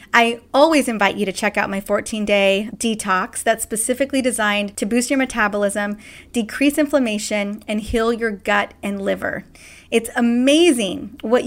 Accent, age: American, 30-49